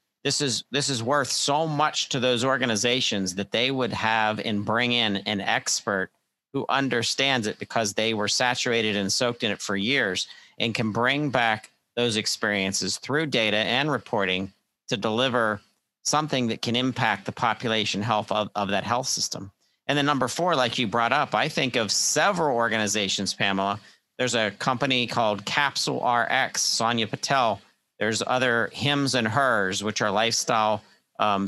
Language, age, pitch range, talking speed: English, 50-69, 105-125 Hz, 165 wpm